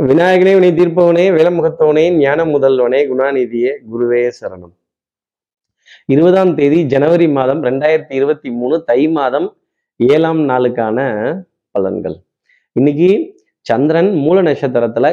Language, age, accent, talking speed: Tamil, 30-49, native, 95 wpm